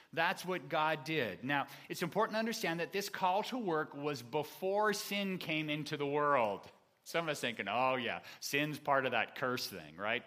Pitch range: 115-170 Hz